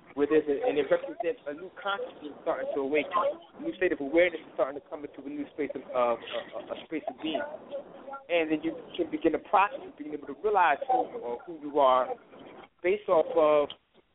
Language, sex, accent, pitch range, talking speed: English, male, American, 140-185 Hz, 220 wpm